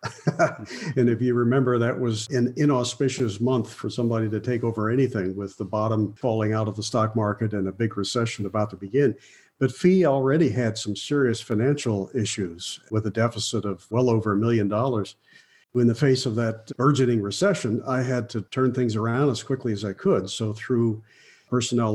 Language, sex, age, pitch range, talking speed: English, male, 50-69, 110-125 Hz, 190 wpm